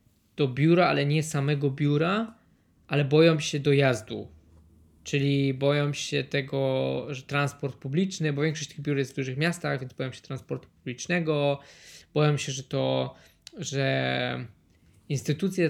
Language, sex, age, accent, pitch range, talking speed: Polish, male, 20-39, native, 125-150 Hz, 140 wpm